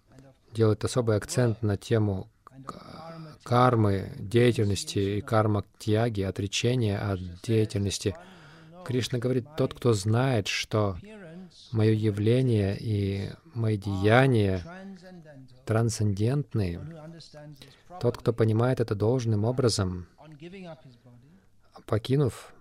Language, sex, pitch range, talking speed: Russian, male, 105-135 Hz, 85 wpm